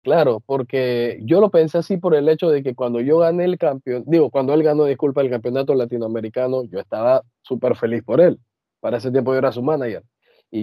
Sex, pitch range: male, 125-165 Hz